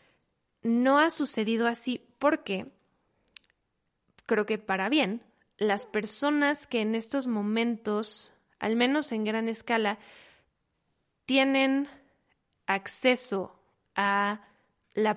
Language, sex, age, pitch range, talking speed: Spanish, female, 20-39, 210-245 Hz, 95 wpm